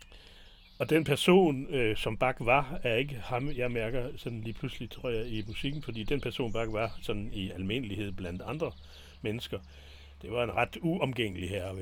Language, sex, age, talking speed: Danish, male, 60-79, 190 wpm